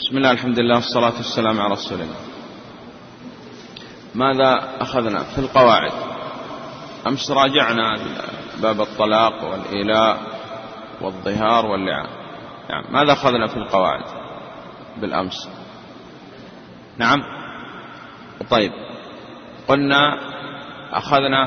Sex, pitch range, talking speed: male, 115-135 Hz, 85 wpm